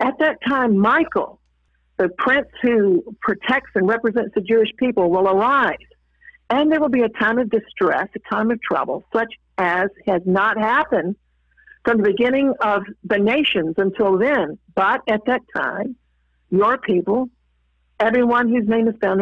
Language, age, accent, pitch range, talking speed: English, 60-79, American, 195-255 Hz, 160 wpm